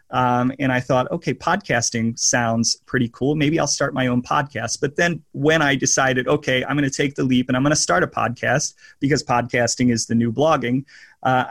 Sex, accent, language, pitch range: male, American, English, 120-135 Hz